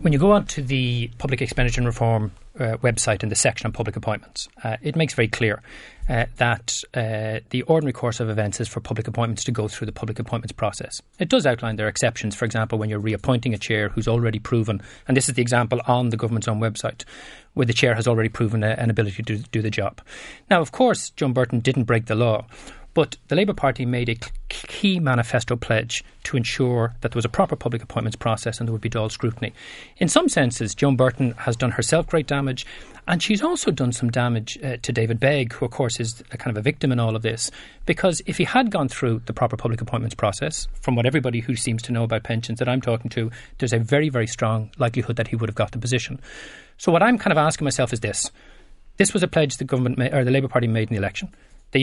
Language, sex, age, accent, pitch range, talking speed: English, male, 30-49, Irish, 115-135 Hz, 240 wpm